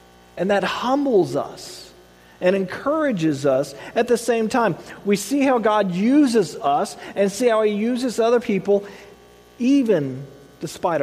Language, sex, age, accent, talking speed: English, male, 40-59, American, 140 wpm